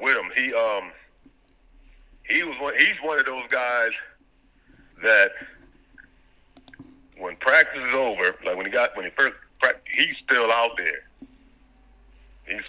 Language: English